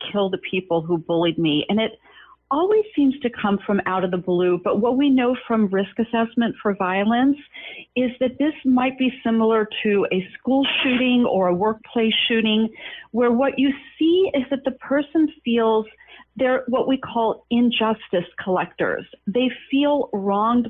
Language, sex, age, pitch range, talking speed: English, female, 40-59, 195-240 Hz, 170 wpm